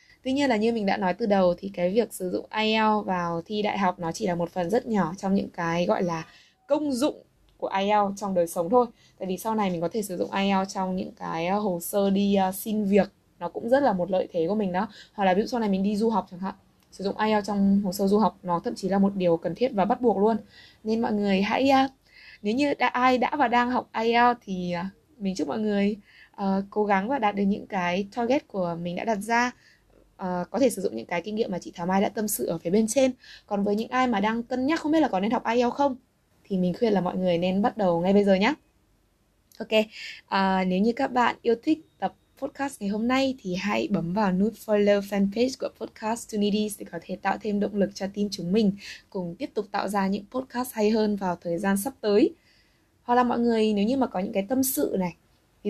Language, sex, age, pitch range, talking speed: Vietnamese, female, 20-39, 185-235 Hz, 260 wpm